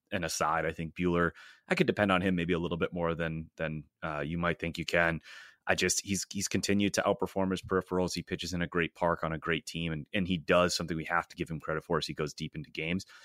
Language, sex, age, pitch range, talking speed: English, male, 30-49, 85-95 Hz, 270 wpm